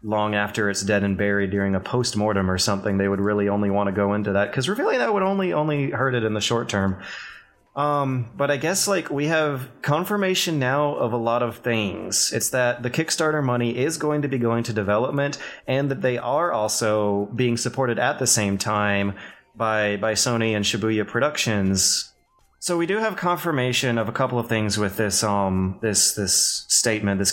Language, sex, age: English, male, 30-49